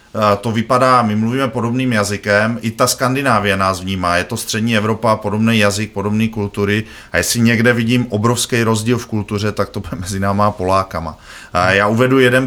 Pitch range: 105-120 Hz